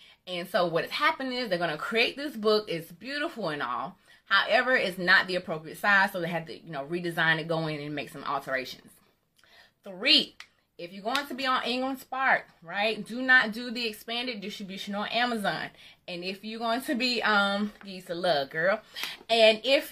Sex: female